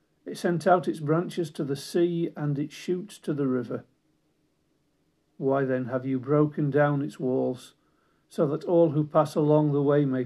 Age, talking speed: 50-69, 180 wpm